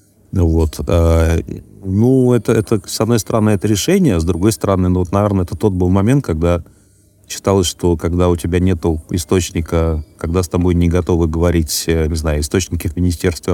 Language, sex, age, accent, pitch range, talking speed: Russian, male, 30-49, native, 85-100 Hz, 170 wpm